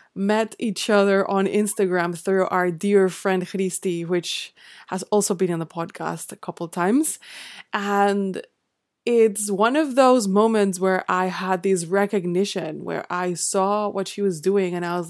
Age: 20-39